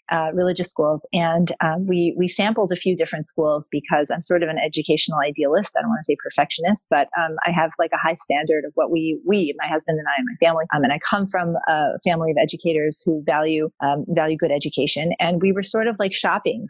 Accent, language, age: American, English, 30-49